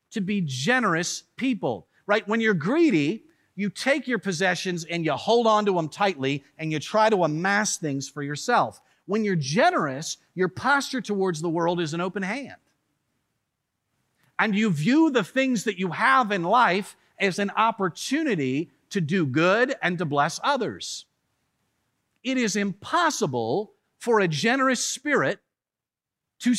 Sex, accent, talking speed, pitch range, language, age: male, American, 150 wpm, 165-235 Hz, English, 50-69